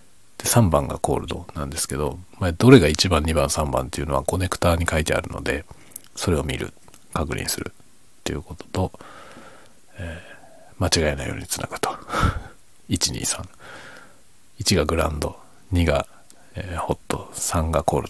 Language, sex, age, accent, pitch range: Japanese, male, 40-59, native, 80-95 Hz